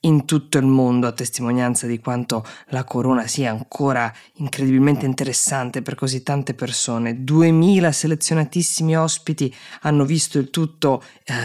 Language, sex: Italian, female